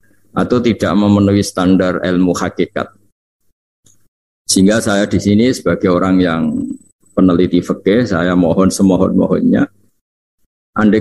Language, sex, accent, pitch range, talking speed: Indonesian, male, native, 90-110 Hz, 105 wpm